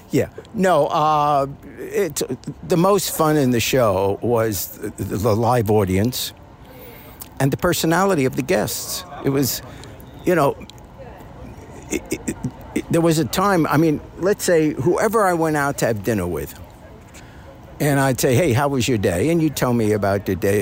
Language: English